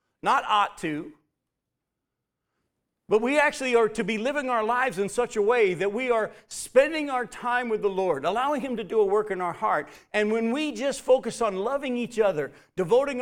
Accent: American